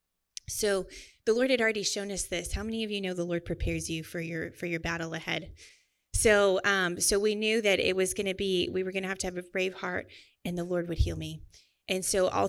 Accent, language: American, English